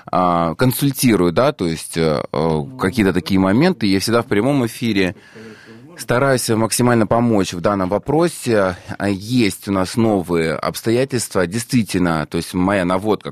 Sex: male